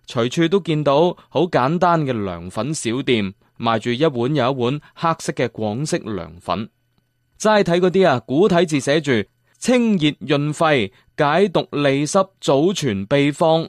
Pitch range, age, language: 115-165 Hz, 20-39, Chinese